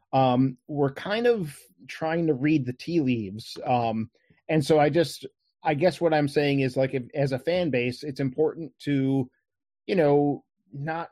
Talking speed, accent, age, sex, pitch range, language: 175 wpm, American, 30-49, male, 130-150 Hz, English